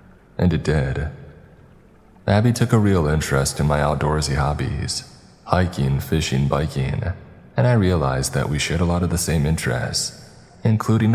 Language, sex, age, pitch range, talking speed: English, male, 20-39, 75-95 Hz, 150 wpm